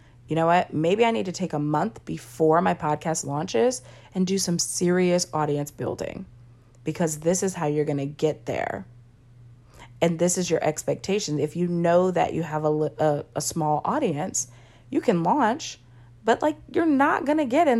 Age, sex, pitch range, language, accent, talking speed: 30-49, female, 120-180 Hz, English, American, 185 wpm